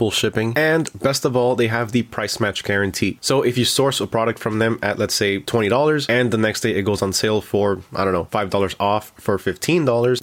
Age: 20-39